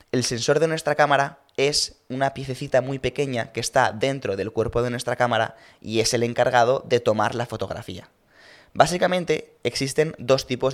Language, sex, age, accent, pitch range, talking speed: Spanish, male, 20-39, Spanish, 115-135 Hz, 170 wpm